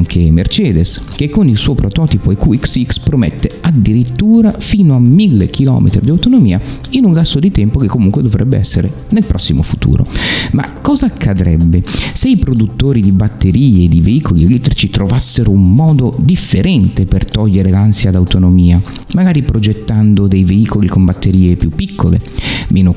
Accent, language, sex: native, Italian, male